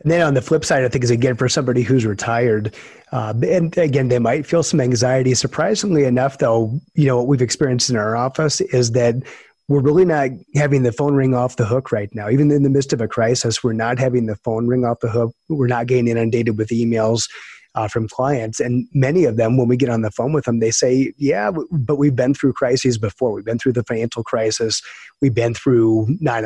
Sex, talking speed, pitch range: male, 235 wpm, 115-140 Hz